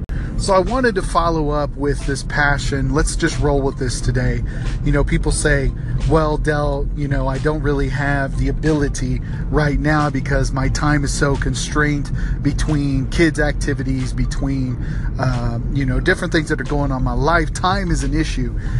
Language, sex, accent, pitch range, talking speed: English, male, American, 130-150 Hz, 180 wpm